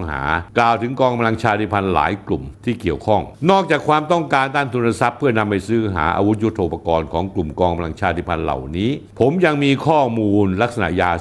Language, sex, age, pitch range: Thai, male, 60-79, 95-125 Hz